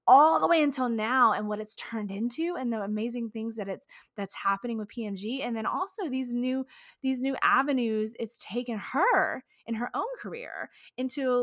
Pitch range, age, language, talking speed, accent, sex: 205-260 Hz, 20-39, English, 190 wpm, American, female